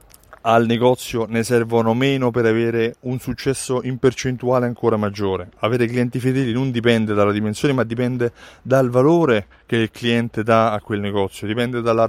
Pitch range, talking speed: 105-130 Hz, 165 wpm